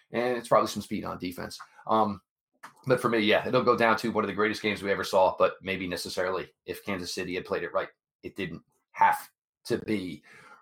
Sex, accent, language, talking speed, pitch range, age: male, American, English, 225 wpm, 115-165 Hz, 30-49